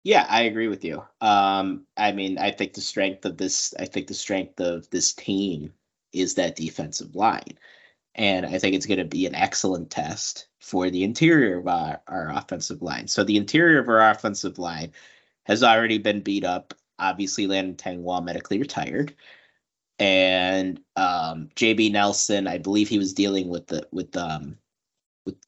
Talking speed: 175 wpm